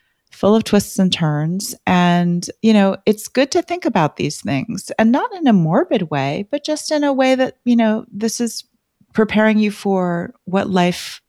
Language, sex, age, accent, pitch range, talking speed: English, female, 30-49, American, 155-205 Hz, 190 wpm